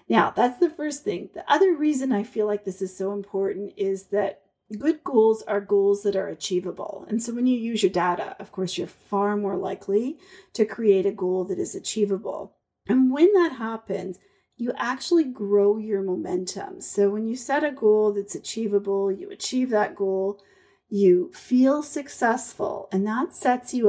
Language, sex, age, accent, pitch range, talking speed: English, female, 40-59, American, 195-280 Hz, 180 wpm